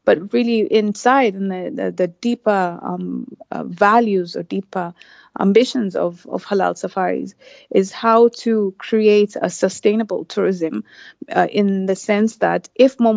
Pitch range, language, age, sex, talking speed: 190-230 Hz, English, 30-49, female, 145 wpm